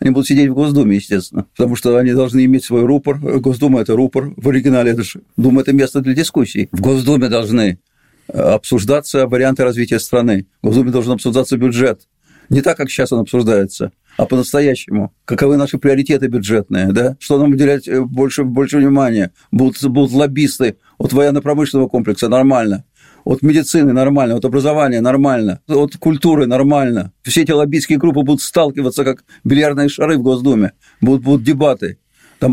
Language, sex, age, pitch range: Russian, male, 50-69, 125-145 Hz